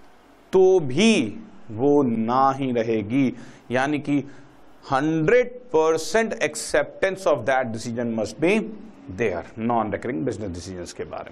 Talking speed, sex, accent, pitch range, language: 120 wpm, male, native, 115-160 Hz, Hindi